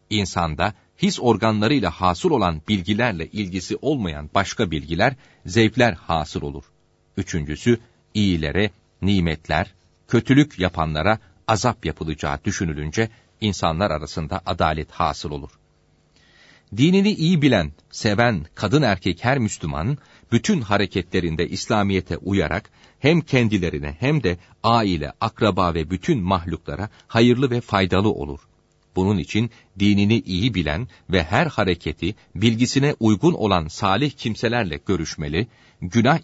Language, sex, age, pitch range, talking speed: Turkish, male, 40-59, 85-120 Hz, 110 wpm